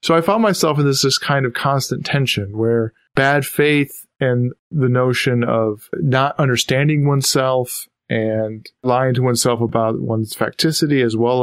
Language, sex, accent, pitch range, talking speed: English, male, American, 115-145 Hz, 155 wpm